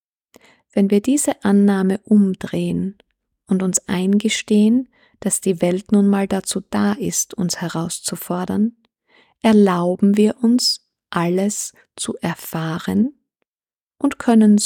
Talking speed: 105 wpm